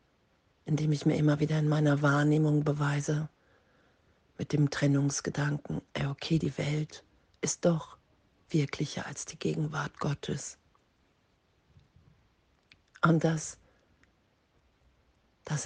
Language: German